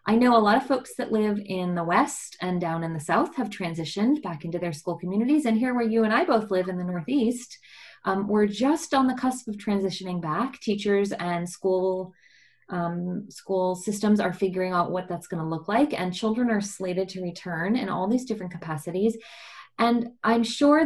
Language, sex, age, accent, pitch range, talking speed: English, female, 20-39, American, 185-235 Hz, 205 wpm